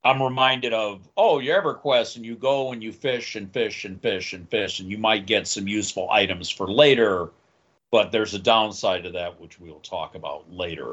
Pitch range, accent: 110-145 Hz, American